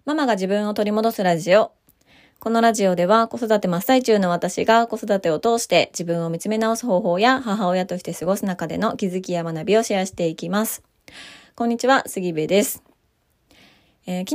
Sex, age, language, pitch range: female, 20-39, Japanese, 170-225 Hz